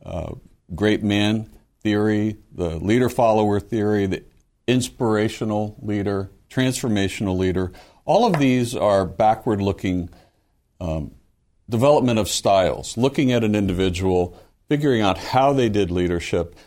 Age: 60-79